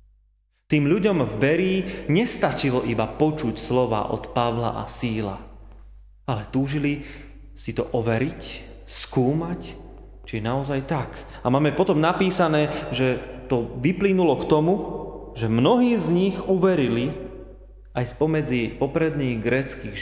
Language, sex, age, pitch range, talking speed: Slovak, male, 30-49, 115-160 Hz, 115 wpm